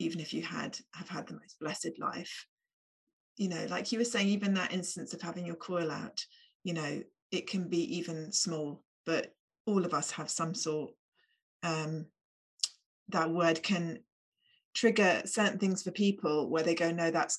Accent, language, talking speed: British, English, 180 wpm